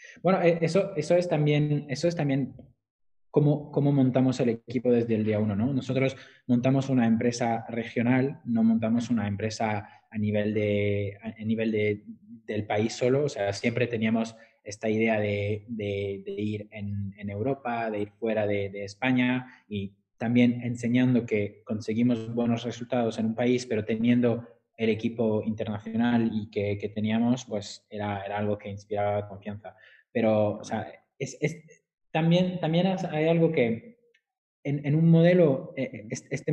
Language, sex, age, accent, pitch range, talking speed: Spanish, male, 20-39, Spanish, 110-135 Hz, 160 wpm